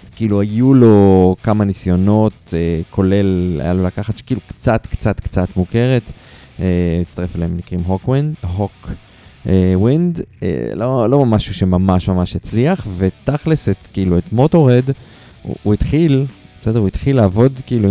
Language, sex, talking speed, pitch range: Hebrew, male, 125 wpm, 95-115 Hz